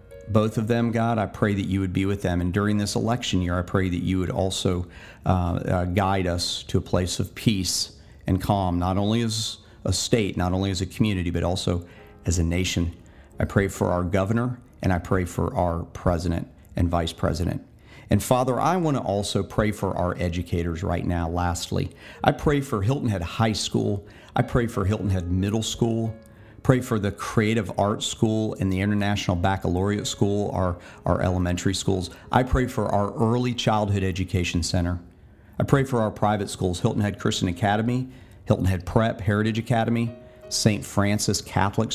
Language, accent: English, American